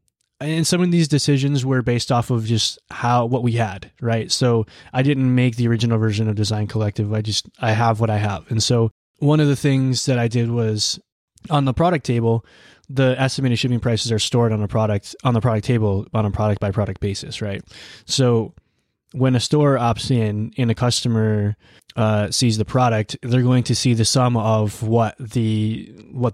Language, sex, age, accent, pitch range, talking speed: English, male, 20-39, American, 110-125 Hz, 205 wpm